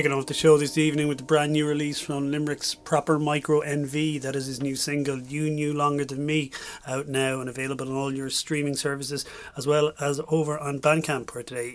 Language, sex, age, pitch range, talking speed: English, male, 30-49, 125-155 Hz, 210 wpm